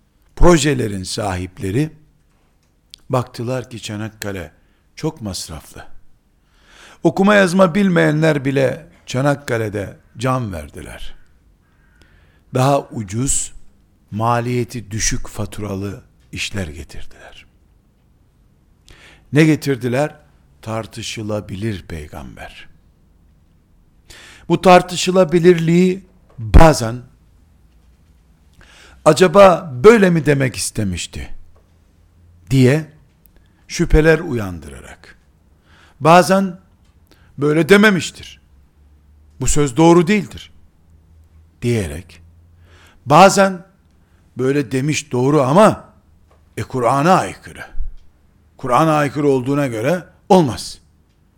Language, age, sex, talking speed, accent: Turkish, 60-79, male, 65 wpm, native